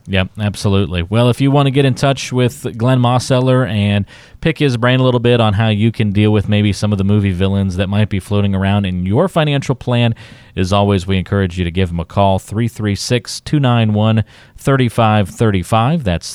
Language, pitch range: English, 95-120 Hz